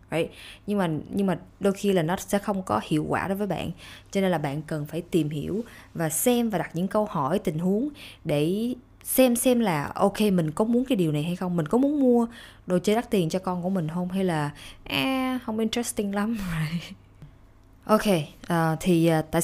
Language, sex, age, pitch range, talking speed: Vietnamese, female, 20-39, 155-210 Hz, 220 wpm